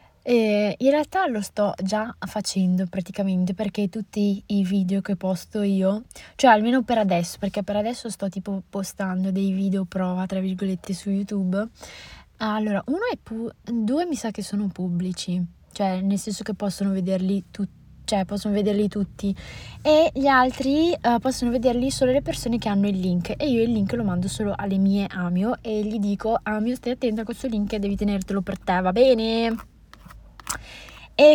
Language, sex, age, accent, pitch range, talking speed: Italian, female, 20-39, native, 195-230 Hz, 180 wpm